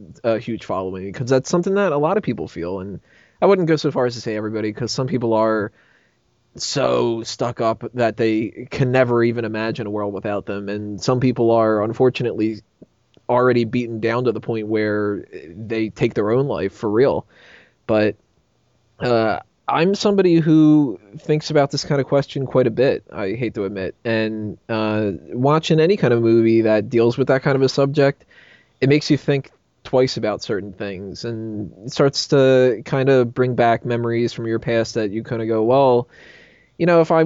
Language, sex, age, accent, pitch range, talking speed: English, male, 20-39, American, 110-135 Hz, 195 wpm